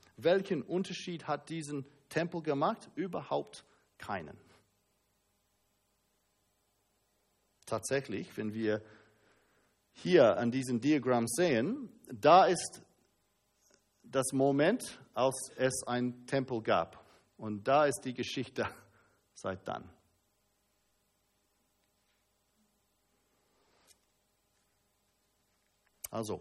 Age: 50-69